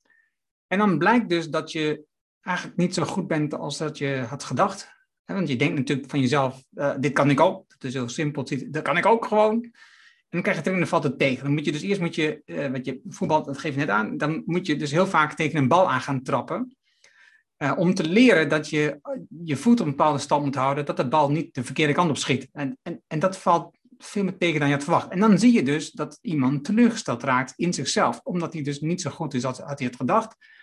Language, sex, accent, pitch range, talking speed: Dutch, male, Dutch, 140-190 Hz, 260 wpm